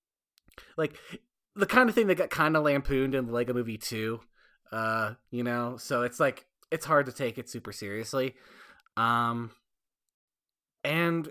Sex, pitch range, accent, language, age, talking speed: male, 120-170 Hz, American, English, 20-39, 160 wpm